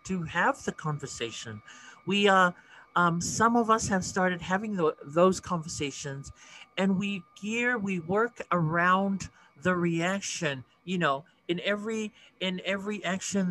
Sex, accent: male, American